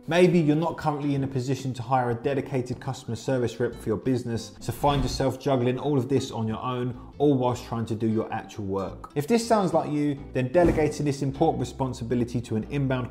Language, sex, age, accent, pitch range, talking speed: English, male, 20-39, British, 110-140 Hz, 220 wpm